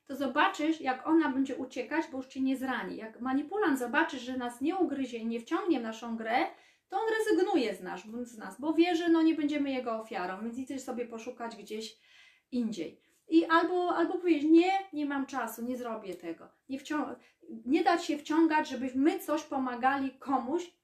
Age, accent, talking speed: 30-49, native, 185 wpm